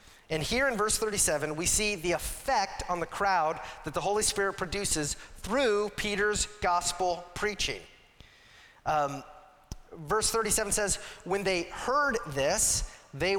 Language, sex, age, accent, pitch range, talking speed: English, male, 30-49, American, 175-230 Hz, 135 wpm